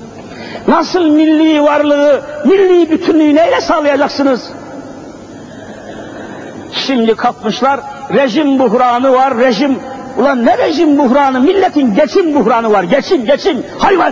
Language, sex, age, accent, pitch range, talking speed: Turkish, male, 50-69, native, 225-295 Hz, 100 wpm